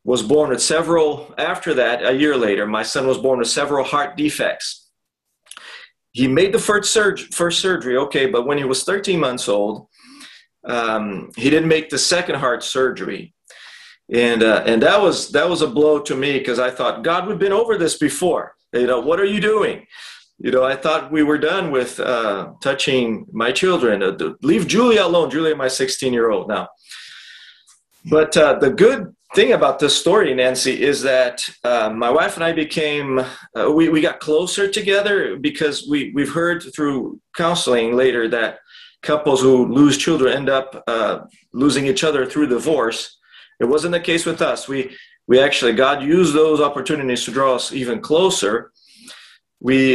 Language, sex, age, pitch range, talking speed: English, male, 40-59, 130-170 Hz, 180 wpm